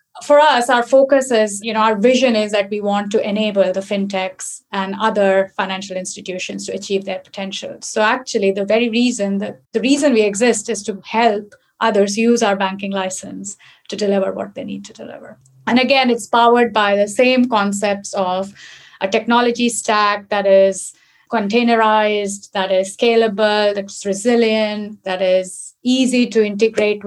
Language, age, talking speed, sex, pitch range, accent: English, 30-49, 165 wpm, female, 195-230 Hz, Indian